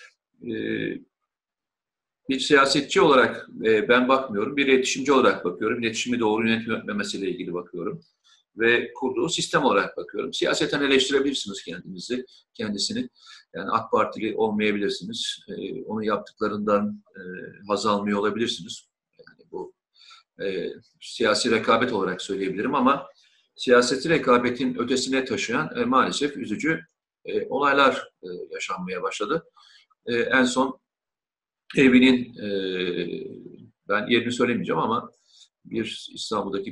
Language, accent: Turkish, native